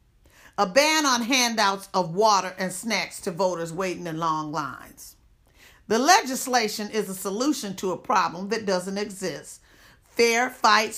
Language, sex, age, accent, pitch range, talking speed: English, female, 40-59, American, 165-215 Hz, 150 wpm